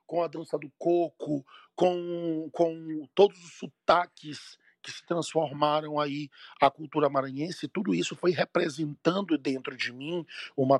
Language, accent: Portuguese, Brazilian